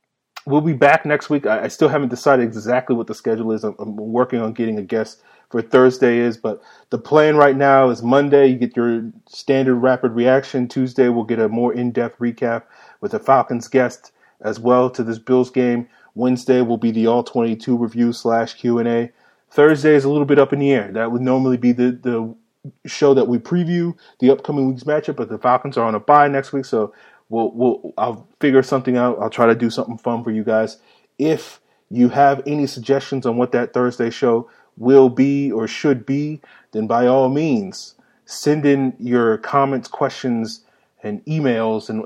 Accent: American